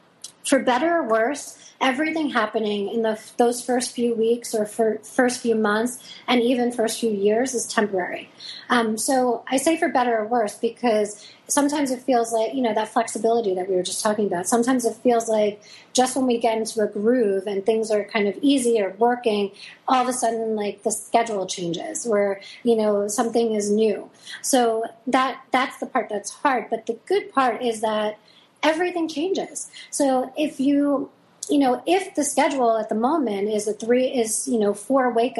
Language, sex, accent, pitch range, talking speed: English, female, American, 215-255 Hz, 195 wpm